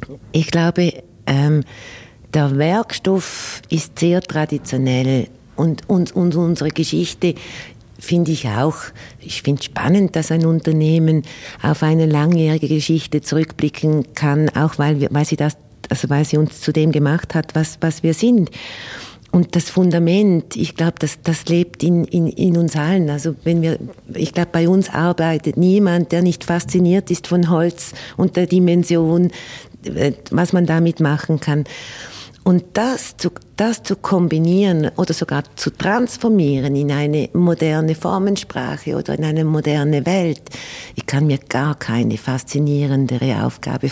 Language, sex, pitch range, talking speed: German, female, 145-175 Hz, 145 wpm